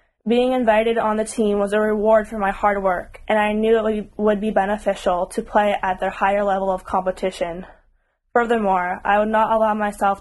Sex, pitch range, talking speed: female, 195-220 Hz, 195 wpm